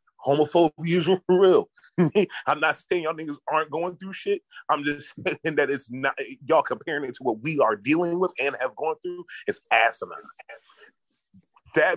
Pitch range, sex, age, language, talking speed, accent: 135-185 Hz, male, 30-49, English, 170 wpm, American